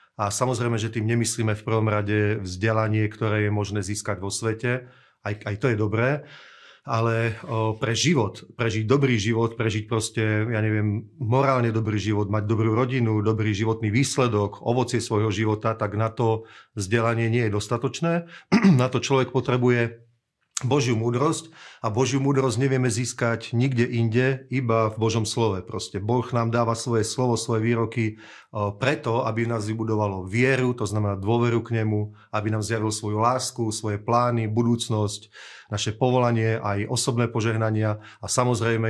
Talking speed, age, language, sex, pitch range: 155 wpm, 40-59, Slovak, male, 110-125 Hz